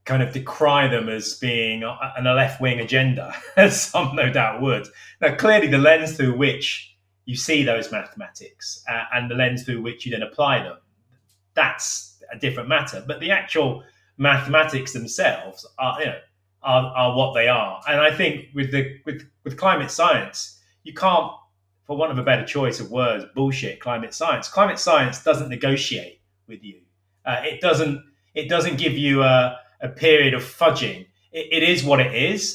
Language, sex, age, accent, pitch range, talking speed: English, male, 20-39, British, 120-145 Hz, 185 wpm